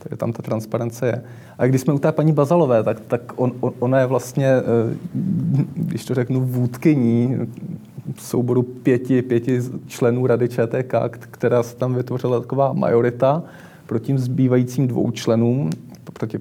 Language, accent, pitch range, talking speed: Czech, native, 115-125 Hz, 150 wpm